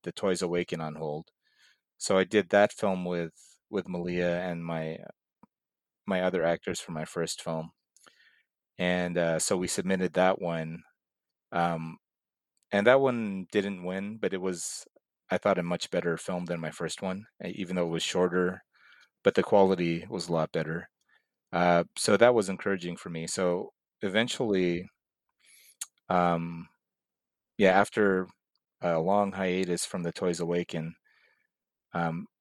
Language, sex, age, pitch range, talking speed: English, male, 30-49, 85-95 Hz, 150 wpm